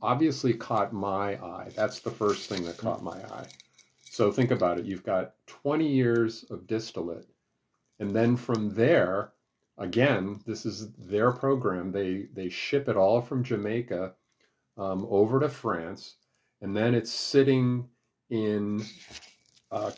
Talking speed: 145 wpm